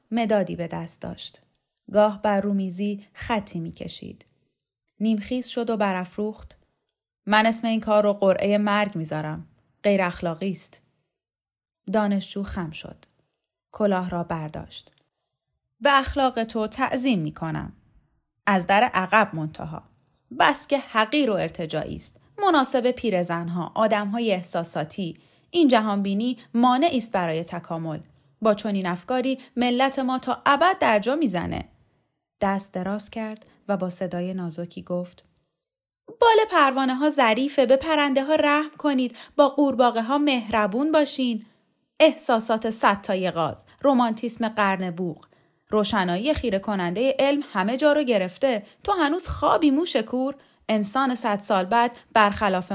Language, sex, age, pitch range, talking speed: Persian, female, 10-29, 185-260 Hz, 125 wpm